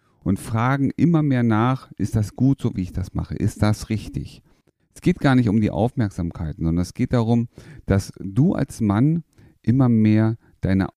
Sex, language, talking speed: male, German, 185 wpm